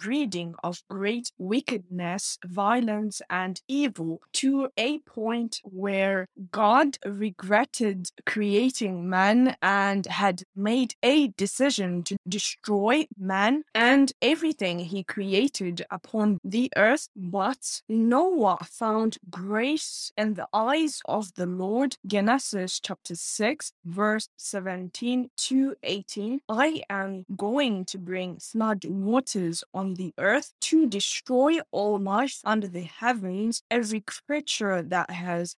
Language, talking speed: English, 115 wpm